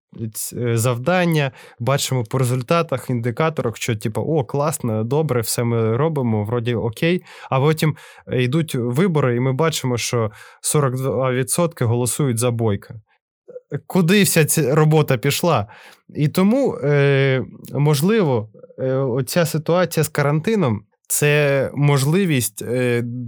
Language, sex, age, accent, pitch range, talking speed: Ukrainian, male, 20-39, native, 120-155 Hz, 110 wpm